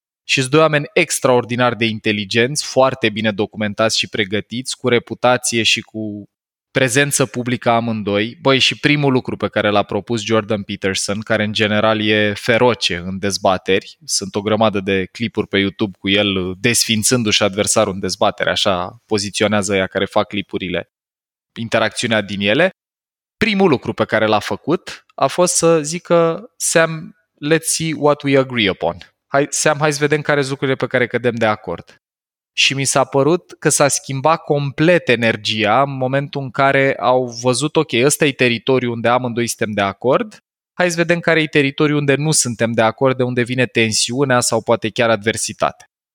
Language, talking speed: Romanian, 170 wpm